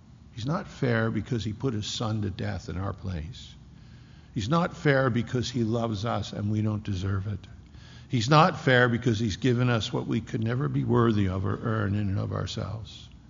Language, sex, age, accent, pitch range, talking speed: English, male, 60-79, American, 105-125 Hz, 205 wpm